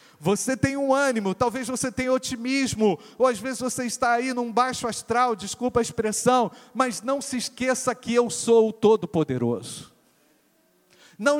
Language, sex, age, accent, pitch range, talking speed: Portuguese, male, 50-69, Brazilian, 220-255 Hz, 160 wpm